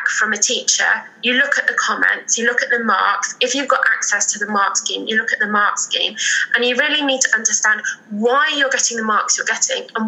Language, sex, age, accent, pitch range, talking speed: English, female, 20-39, British, 225-270 Hz, 245 wpm